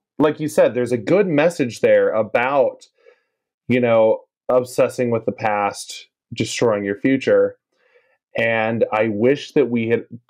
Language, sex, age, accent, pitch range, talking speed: English, male, 20-39, American, 110-155 Hz, 140 wpm